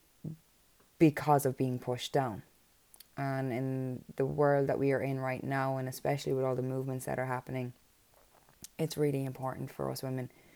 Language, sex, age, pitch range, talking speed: English, female, 20-39, 125-145 Hz, 170 wpm